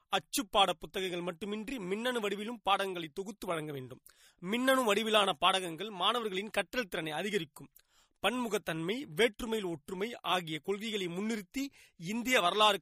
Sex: male